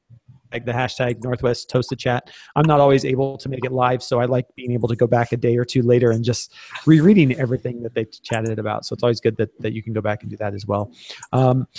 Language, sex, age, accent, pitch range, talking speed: English, male, 30-49, American, 115-130 Hz, 265 wpm